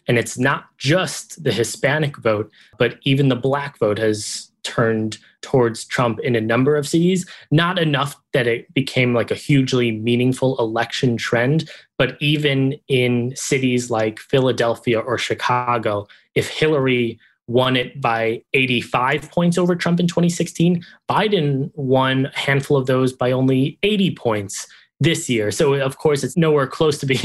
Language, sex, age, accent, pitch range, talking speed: English, male, 20-39, American, 115-140 Hz, 155 wpm